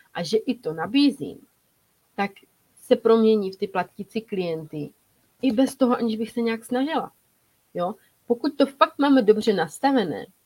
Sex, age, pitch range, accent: female, 30-49, 190-255 Hz, native